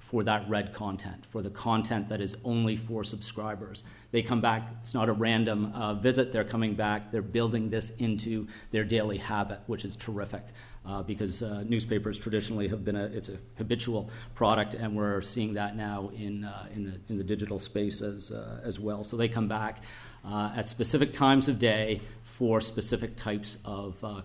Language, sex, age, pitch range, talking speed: English, male, 40-59, 105-115 Hz, 190 wpm